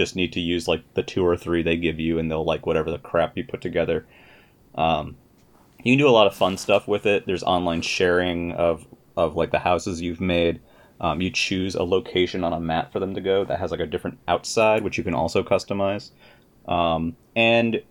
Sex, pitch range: male, 80-90 Hz